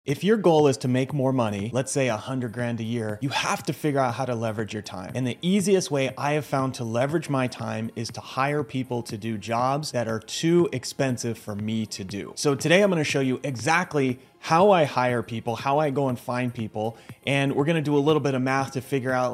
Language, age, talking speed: English, 30-49, 250 wpm